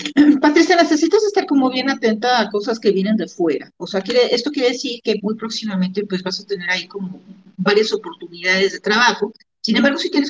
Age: 40-59